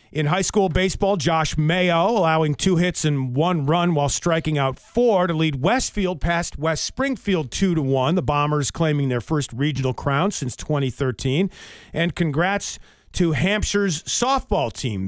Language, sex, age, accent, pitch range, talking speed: English, male, 40-59, American, 145-185 Hz, 150 wpm